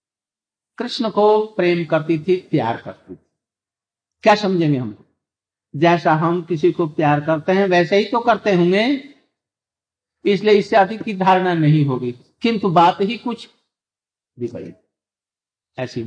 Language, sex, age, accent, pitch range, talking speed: Hindi, male, 60-79, native, 150-225 Hz, 125 wpm